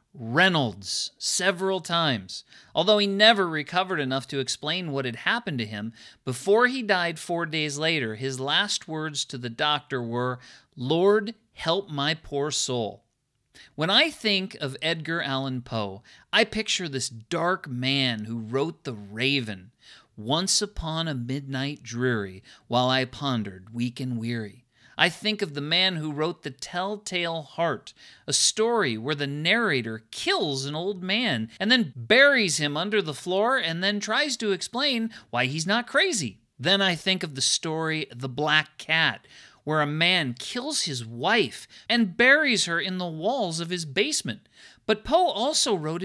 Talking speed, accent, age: 160 wpm, American, 50-69